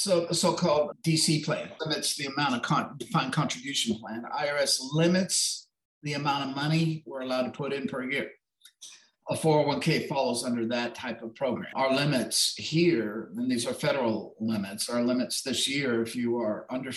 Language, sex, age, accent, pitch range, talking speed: English, male, 50-69, American, 130-170 Hz, 175 wpm